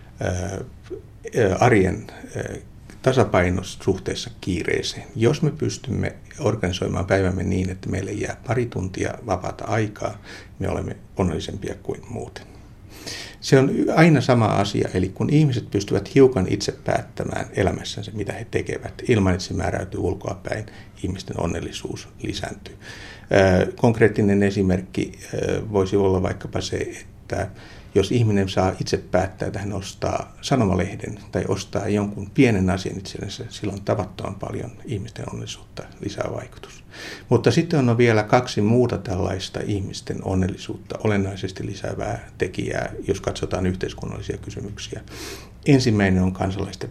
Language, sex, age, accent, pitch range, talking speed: Finnish, male, 60-79, native, 95-115 Hz, 120 wpm